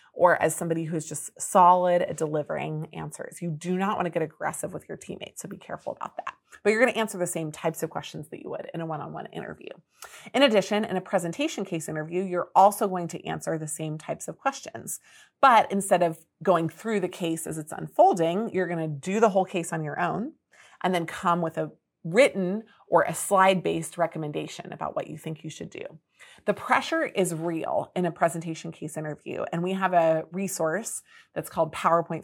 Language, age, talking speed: English, 30-49, 210 wpm